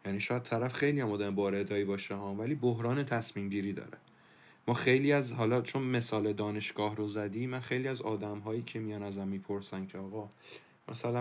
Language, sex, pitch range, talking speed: Persian, male, 105-130 Hz, 175 wpm